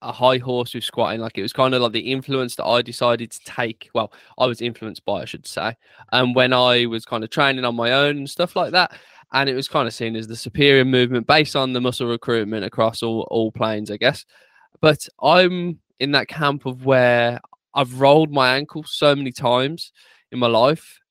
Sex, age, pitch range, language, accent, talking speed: male, 20-39, 120-145 Hz, English, British, 220 wpm